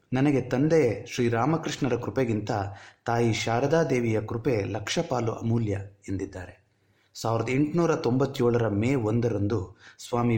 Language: Kannada